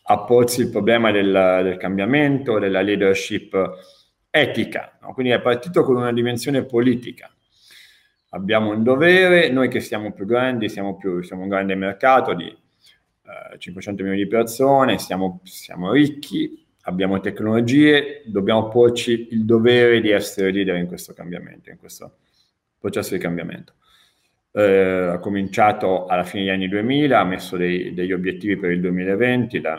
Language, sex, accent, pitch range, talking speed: Italian, male, native, 95-120 Hz, 150 wpm